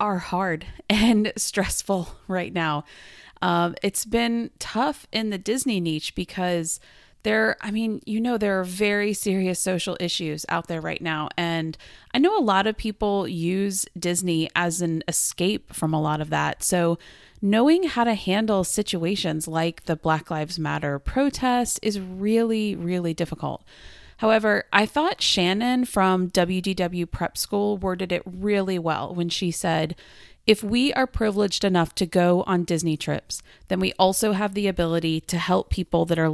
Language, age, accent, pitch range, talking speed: English, 30-49, American, 170-215 Hz, 165 wpm